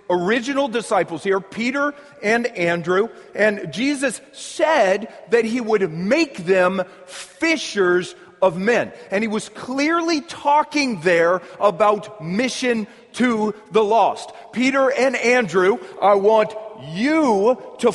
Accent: American